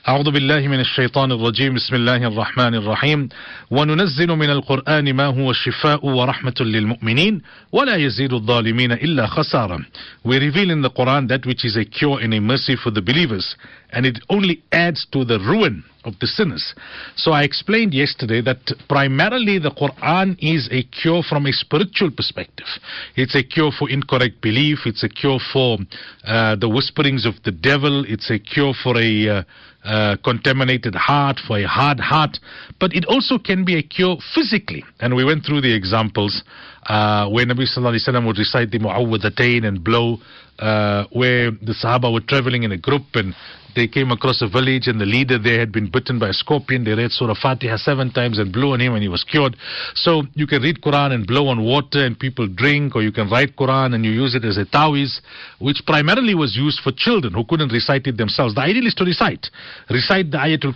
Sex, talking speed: male, 175 wpm